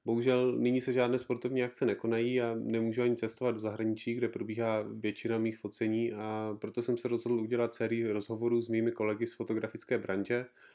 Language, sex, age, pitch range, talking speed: English, male, 30-49, 110-120 Hz, 180 wpm